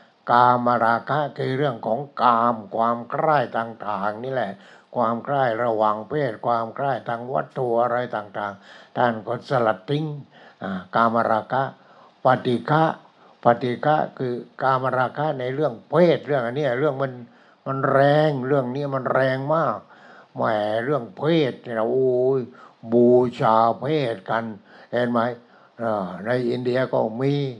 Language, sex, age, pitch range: English, male, 60-79, 115-135 Hz